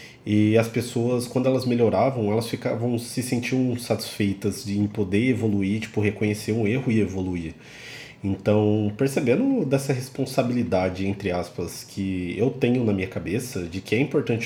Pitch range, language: 105-140 Hz, Portuguese